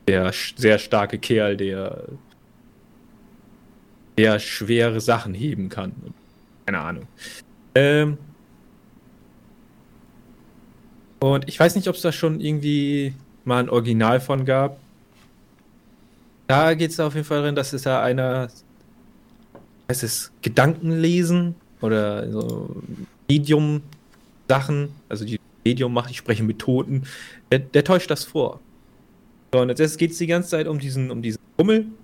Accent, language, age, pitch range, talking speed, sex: German, German, 30-49, 115-155 Hz, 135 wpm, male